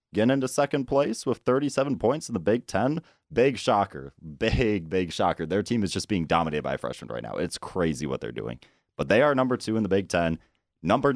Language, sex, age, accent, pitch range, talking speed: English, male, 30-49, American, 80-120 Hz, 225 wpm